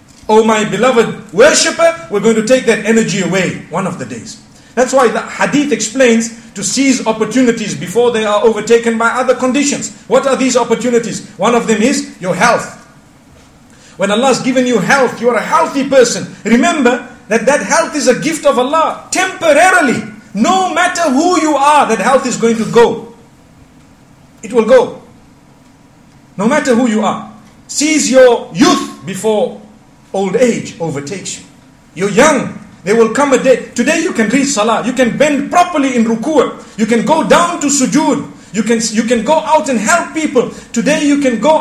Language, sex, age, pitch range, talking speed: English, male, 50-69, 225-285 Hz, 180 wpm